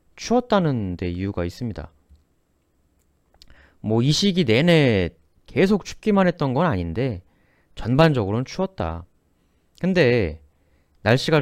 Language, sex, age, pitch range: Korean, male, 30-49, 80-135 Hz